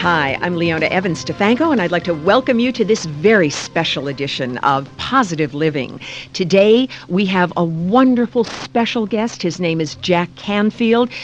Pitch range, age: 160-215 Hz, 50-69